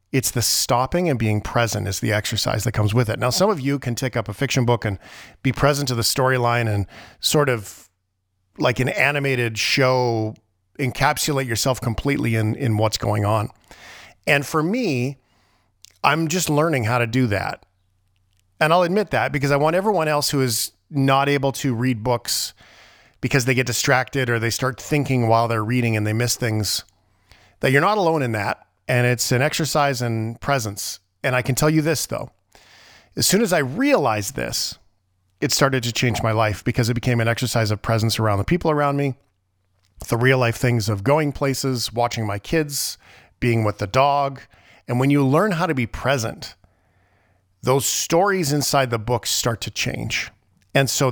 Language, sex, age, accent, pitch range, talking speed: English, male, 40-59, American, 105-140 Hz, 185 wpm